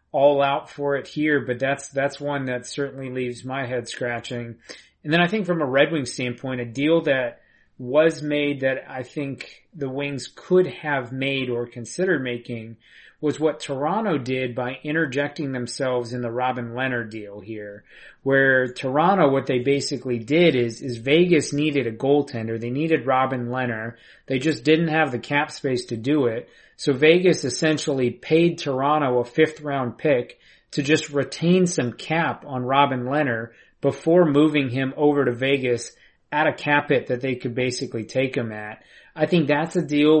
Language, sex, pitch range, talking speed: English, male, 125-145 Hz, 175 wpm